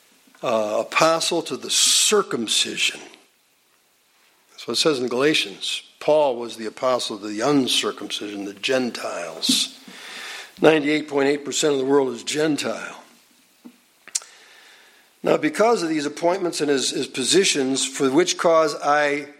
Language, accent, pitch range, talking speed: English, American, 135-200 Hz, 120 wpm